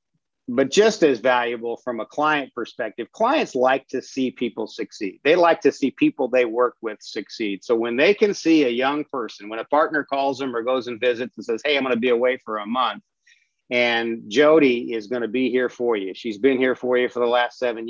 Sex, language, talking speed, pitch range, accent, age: male, English, 225 wpm, 115-135 Hz, American, 50-69